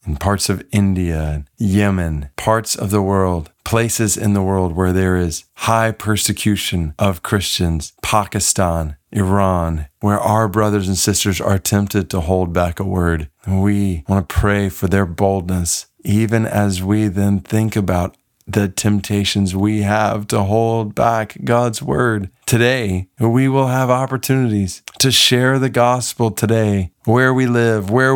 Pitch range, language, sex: 100-140 Hz, English, male